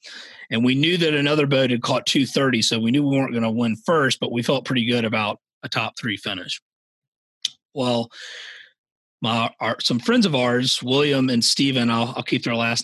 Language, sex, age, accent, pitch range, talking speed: English, male, 30-49, American, 120-160 Hz, 200 wpm